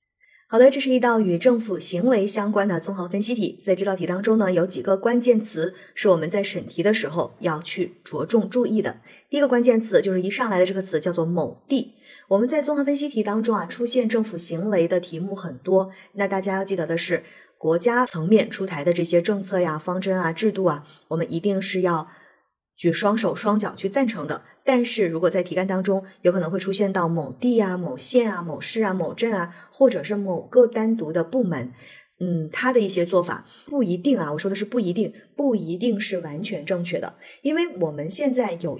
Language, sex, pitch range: Chinese, female, 175-230 Hz